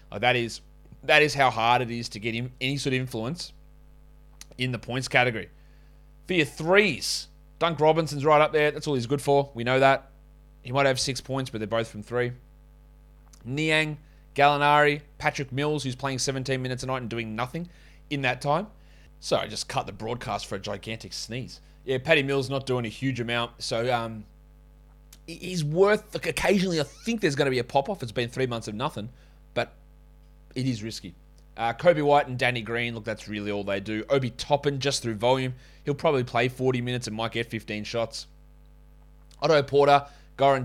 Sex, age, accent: male, 20-39, Australian